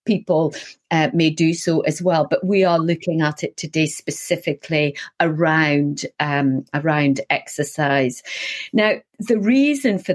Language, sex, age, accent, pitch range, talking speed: English, female, 40-59, British, 160-210 Hz, 135 wpm